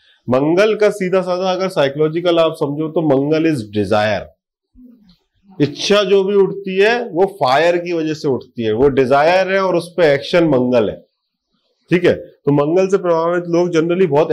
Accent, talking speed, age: native, 175 wpm, 30-49